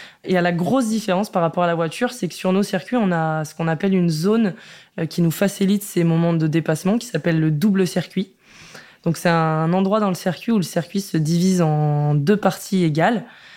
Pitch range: 165-190 Hz